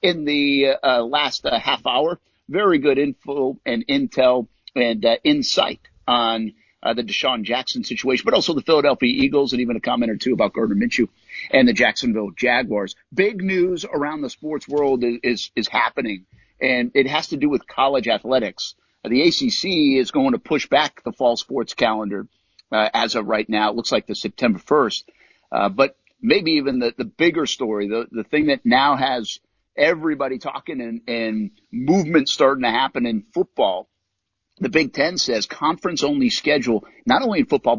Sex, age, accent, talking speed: male, 50-69, American, 180 wpm